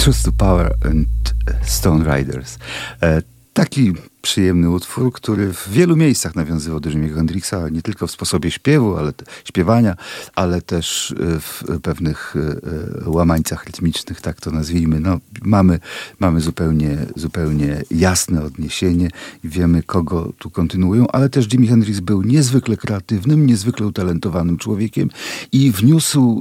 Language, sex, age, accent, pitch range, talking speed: Polish, male, 50-69, native, 85-110 Hz, 130 wpm